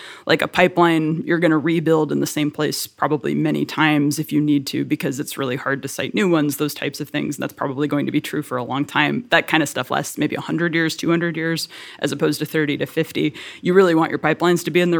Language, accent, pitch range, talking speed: English, American, 145-165 Hz, 265 wpm